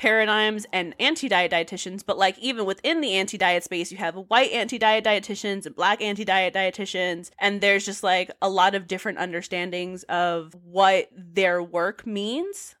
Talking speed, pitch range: 160 wpm, 185-215 Hz